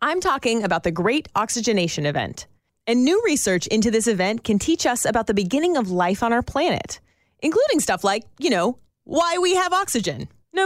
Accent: American